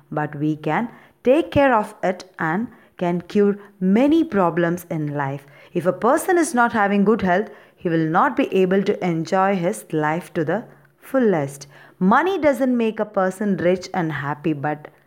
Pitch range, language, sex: 165-240 Hz, Tamil, female